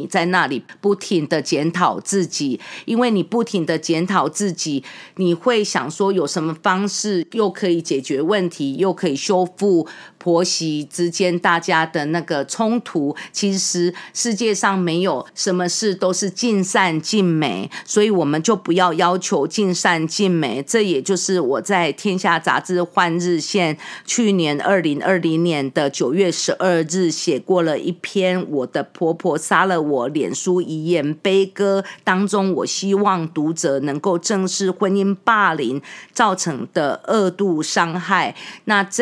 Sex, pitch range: female, 170-200 Hz